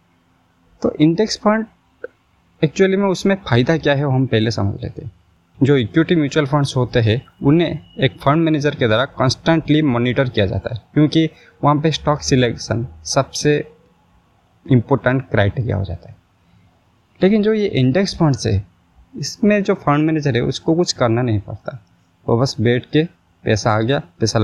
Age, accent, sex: 20-39, native, male